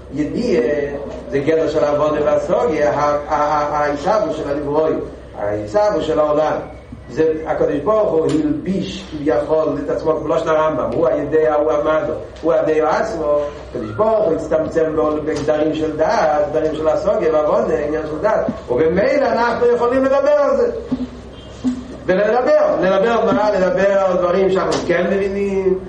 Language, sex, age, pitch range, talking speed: Hebrew, male, 40-59, 155-225 Hz, 135 wpm